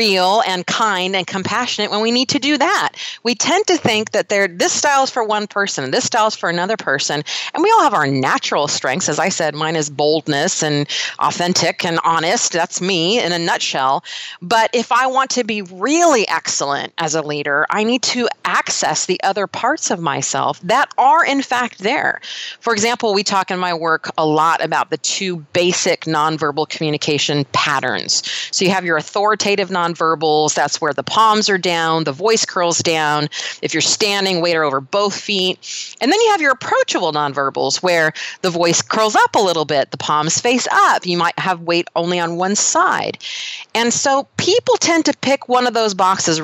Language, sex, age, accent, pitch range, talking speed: English, female, 30-49, American, 160-235 Hz, 200 wpm